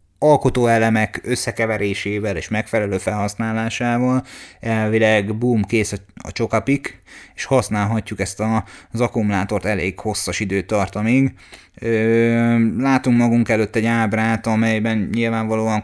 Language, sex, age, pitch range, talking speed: Hungarian, male, 20-39, 105-120 Hz, 100 wpm